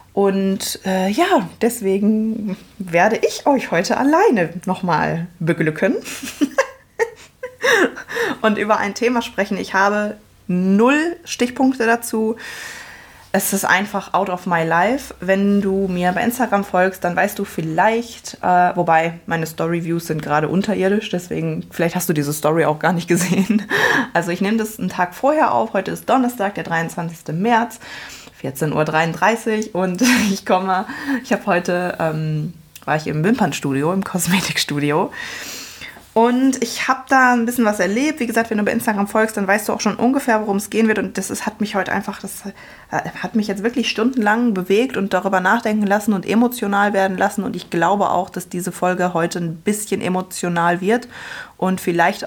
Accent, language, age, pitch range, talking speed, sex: German, German, 20-39, 180-225 Hz, 165 wpm, female